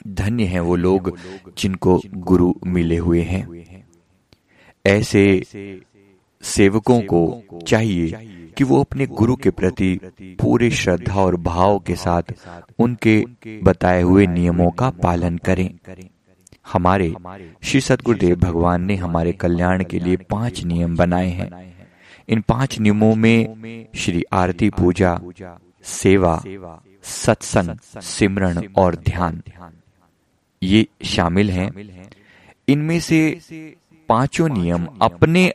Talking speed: 110 wpm